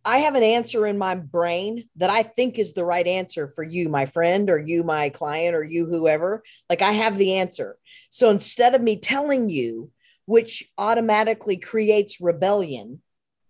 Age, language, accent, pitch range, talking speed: 40-59, English, American, 170-230 Hz, 180 wpm